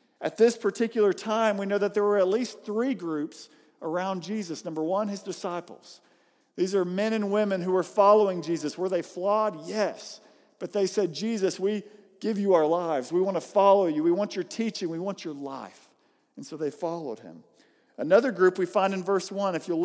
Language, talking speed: English, 205 wpm